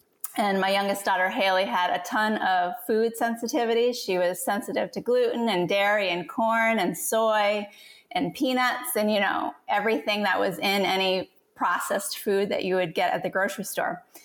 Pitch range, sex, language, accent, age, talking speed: 190-240 Hz, female, English, American, 30-49, 175 wpm